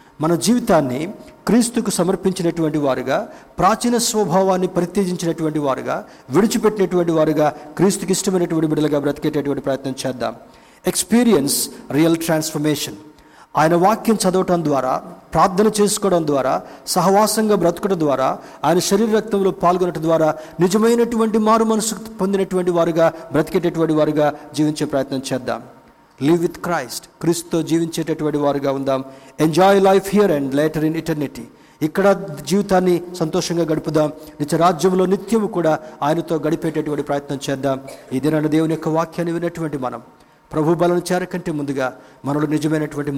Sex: male